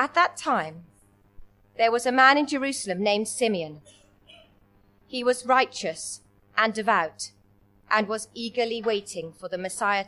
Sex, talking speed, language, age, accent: female, 135 wpm, English, 30-49, British